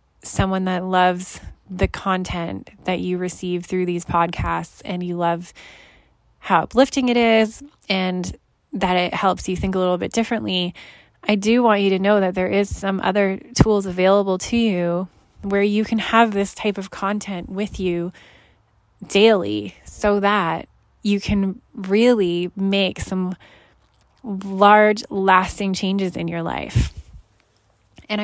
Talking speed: 145 wpm